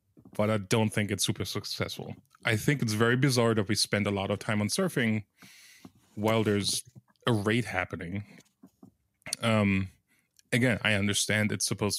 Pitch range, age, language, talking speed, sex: 100-115 Hz, 30-49, English, 160 wpm, male